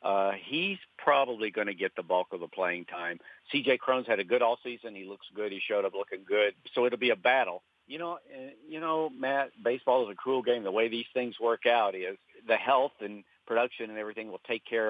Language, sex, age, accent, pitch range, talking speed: English, male, 50-69, American, 100-125 Hz, 240 wpm